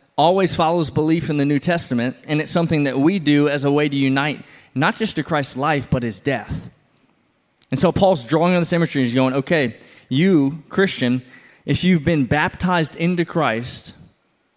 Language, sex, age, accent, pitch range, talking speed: English, male, 20-39, American, 125-160 Hz, 180 wpm